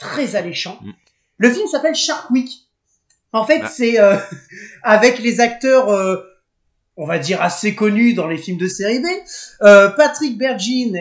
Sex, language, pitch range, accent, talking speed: male, French, 185-245 Hz, French, 160 wpm